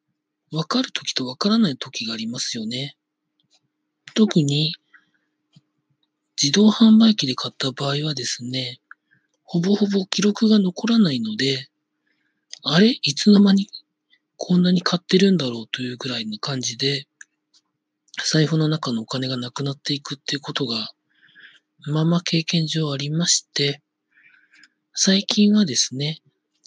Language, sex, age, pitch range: Japanese, male, 40-59, 135-195 Hz